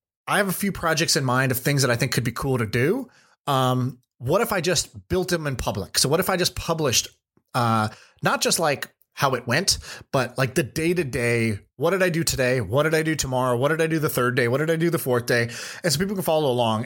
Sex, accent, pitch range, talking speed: male, American, 125-155 Hz, 260 wpm